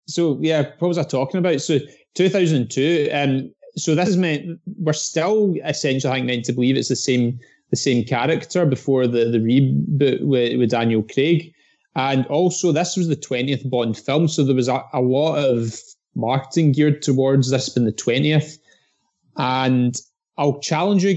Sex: male